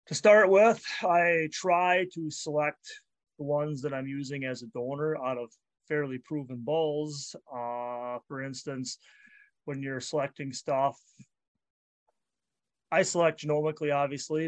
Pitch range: 140-165 Hz